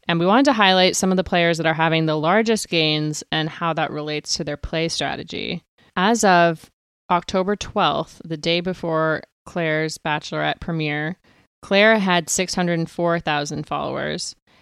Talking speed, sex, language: 150 wpm, female, English